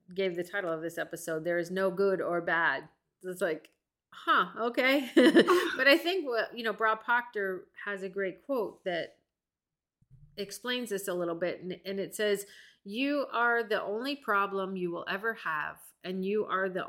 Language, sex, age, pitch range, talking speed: English, female, 30-49, 180-215 Hz, 185 wpm